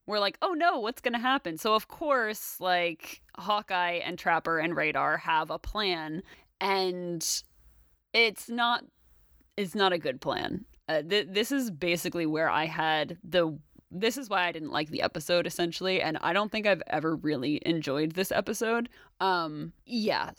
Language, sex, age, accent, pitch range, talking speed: English, female, 20-39, American, 170-210 Hz, 170 wpm